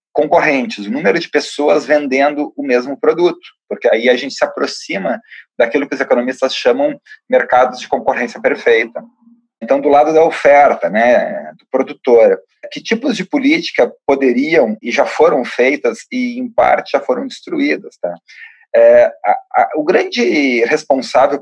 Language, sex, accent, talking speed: Portuguese, male, Brazilian, 150 wpm